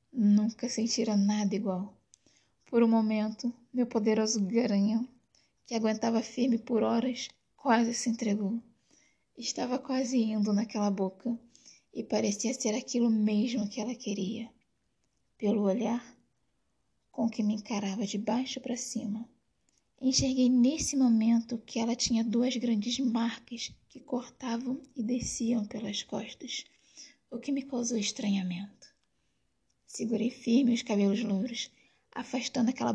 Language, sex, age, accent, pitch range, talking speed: Portuguese, female, 10-29, Brazilian, 215-250 Hz, 125 wpm